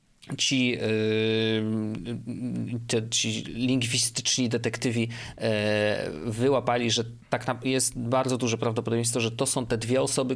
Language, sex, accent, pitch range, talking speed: Polish, male, native, 110-145 Hz, 120 wpm